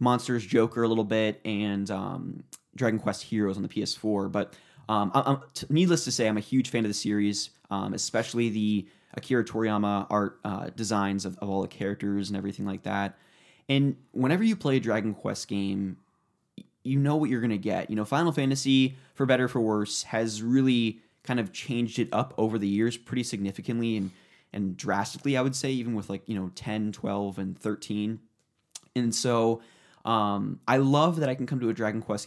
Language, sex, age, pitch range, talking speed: English, male, 20-39, 105-130 Hz, 195 wpm